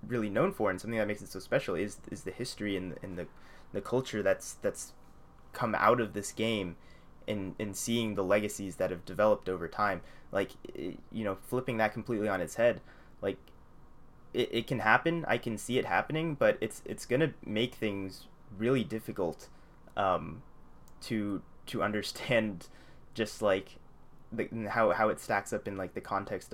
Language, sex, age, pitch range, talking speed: English, male, 20-39, 100-115 Hz, 185 wpm